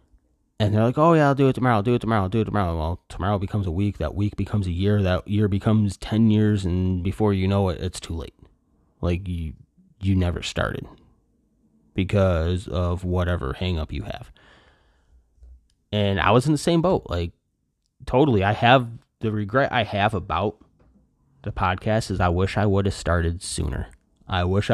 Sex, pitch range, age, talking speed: male, 90-120 Hz, 20-39, 190 wpm